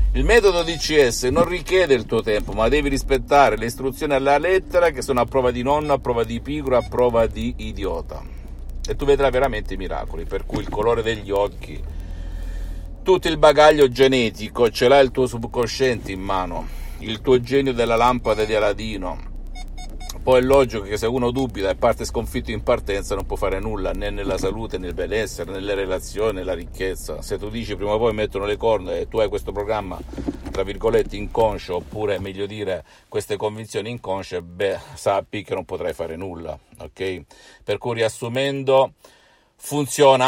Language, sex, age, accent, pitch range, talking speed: Italian, male, 50-69, native, 100-135 Hz, 180 wpm